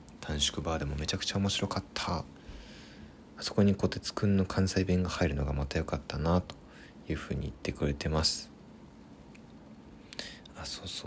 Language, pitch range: Japanese, 70-90 Hz